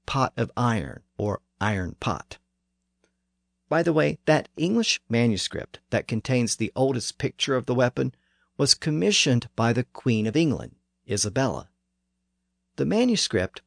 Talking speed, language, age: 130 wpm, English, 50-69